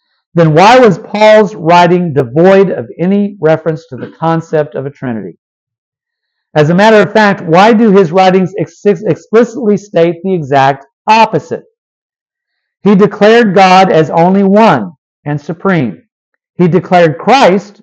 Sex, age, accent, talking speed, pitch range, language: male, 50-69, American, 135 wpm, 155-215 Hz, English